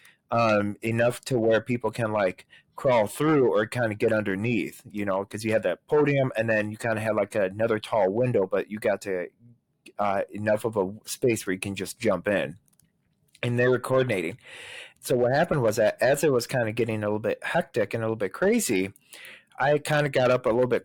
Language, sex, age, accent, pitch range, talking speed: English, male, 30-49, American, 110-125 Hz, 225 wpm